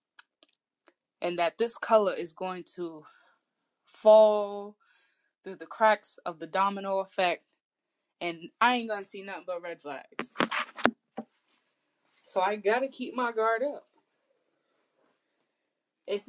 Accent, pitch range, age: American, 175-220 Hz, 10-29